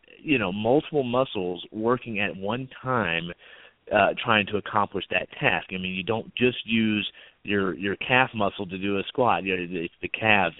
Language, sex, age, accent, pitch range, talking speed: English, male, 30-49, American, 100-125 Hz, 185 wpm